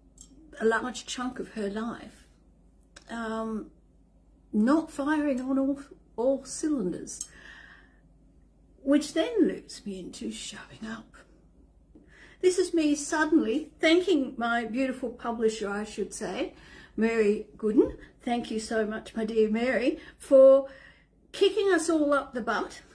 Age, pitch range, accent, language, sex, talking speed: 50-69, 215-285 Hz, Australian, English, female, 125 wpm